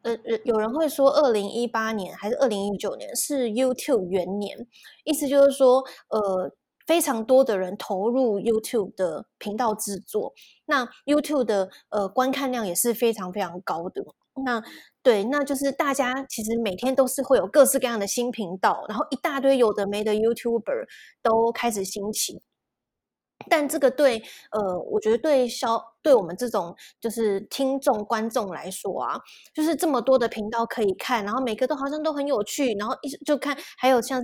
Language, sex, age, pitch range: Chinese, female, 20-39, 210-275 Hz